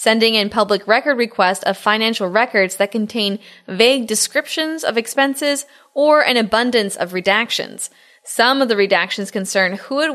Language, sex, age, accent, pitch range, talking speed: English, female, 10-29, American, 190-255 Hz, 155 wpm